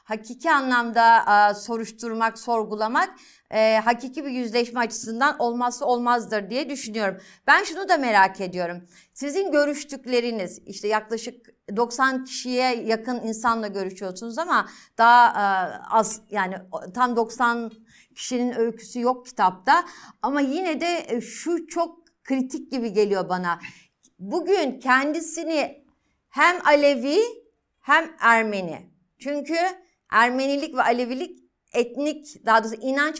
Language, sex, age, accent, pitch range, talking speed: Turkish, female, 60-79, native, 225-295 Hz, 115 wpm